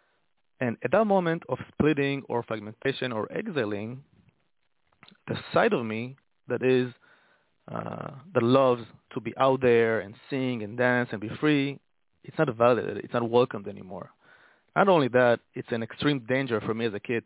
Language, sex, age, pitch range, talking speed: English, male, 30-49, 110-135 Hz, 170 wpm